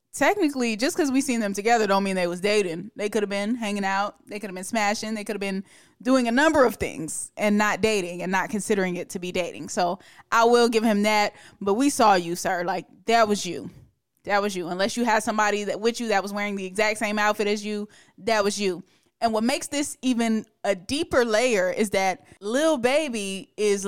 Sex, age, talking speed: female, 20-39, 230 wpm